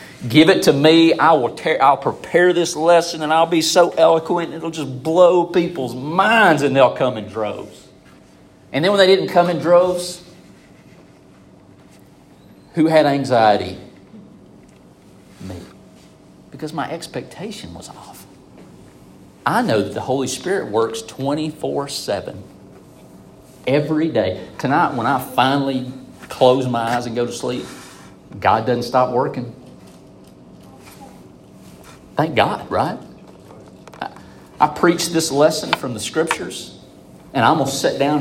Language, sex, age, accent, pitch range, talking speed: English, male, 40-59, American, 120-155 Hz, 130 wpm